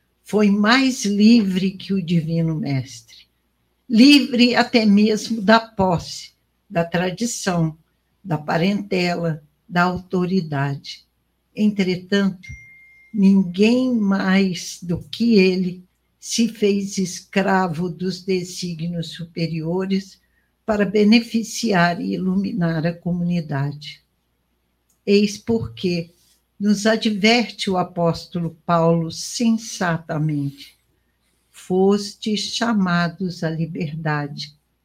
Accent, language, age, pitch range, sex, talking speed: Brazilian, Portuguese, 60-79, 160-205 Hz, female, 85 wpm